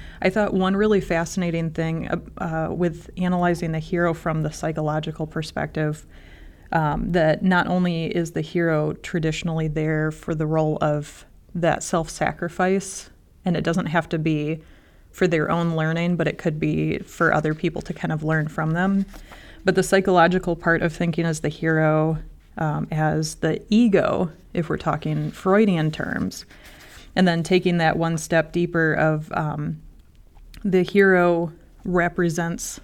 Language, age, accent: English, 30-49, American